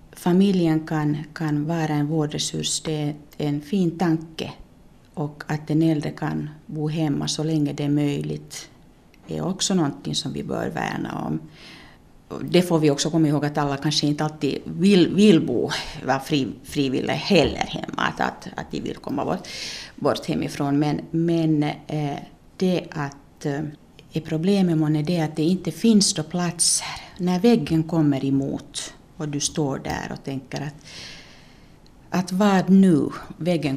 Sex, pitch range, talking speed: female, 150-180 Hz, 155 wpm